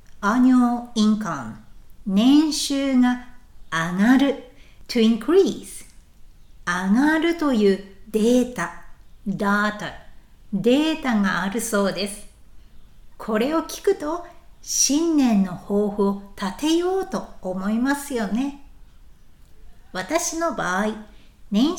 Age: 60-79